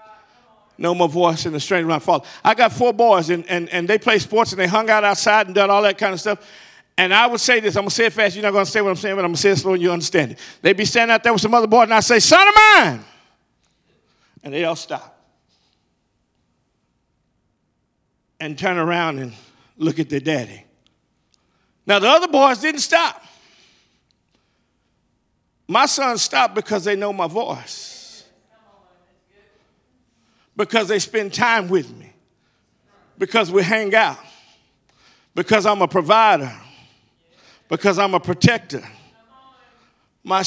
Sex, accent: male, American